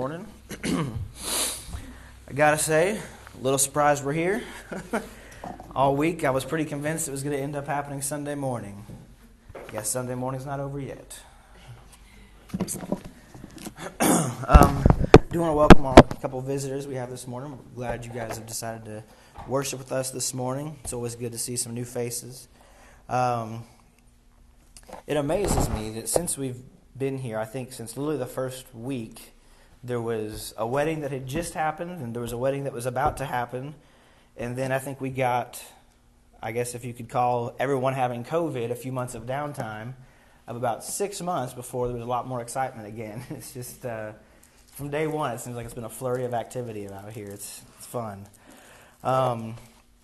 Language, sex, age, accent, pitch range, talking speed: English, male, 20-39, American, 115-135 Hz, 175 wpm